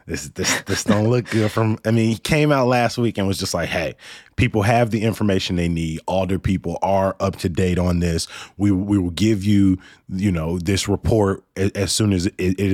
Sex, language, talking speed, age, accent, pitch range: male, English, 225 wpm, 20-39, American, 95-125 Hz